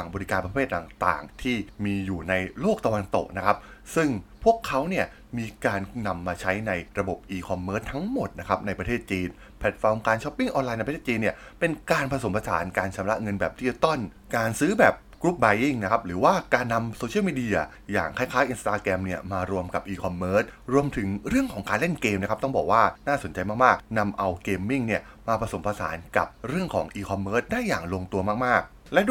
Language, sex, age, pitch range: Thai, male, 20-39, 95-125 Hz